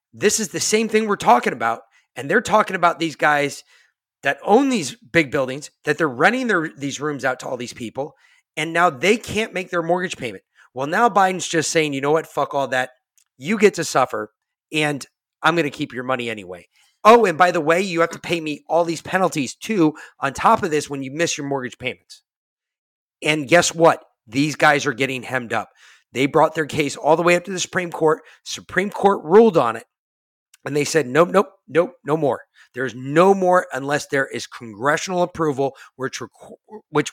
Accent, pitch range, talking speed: American, 135-180 Hz, 205 wpm